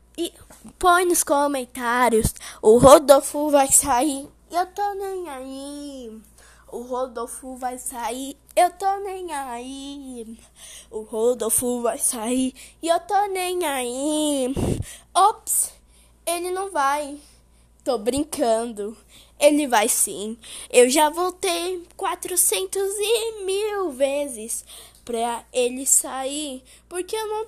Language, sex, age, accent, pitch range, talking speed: Portuguese, female, 10-29, Brazilian, 265-355 Hz, 110 wpm